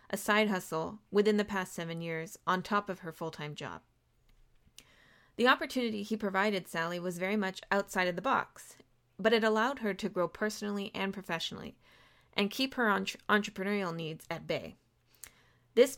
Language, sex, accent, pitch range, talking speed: English, female, American, 175-220 Hz, 170 wpm